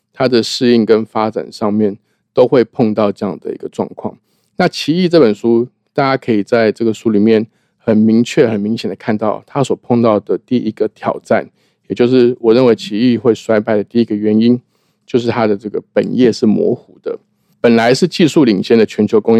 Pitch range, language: 110-130 Hz, Chinese